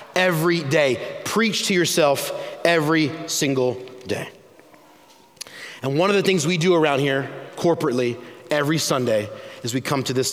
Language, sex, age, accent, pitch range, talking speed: English, male, 30-49, American, 150-205 Hz, 145 wpm